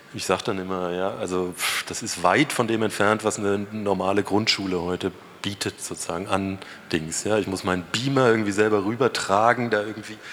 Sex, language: male, German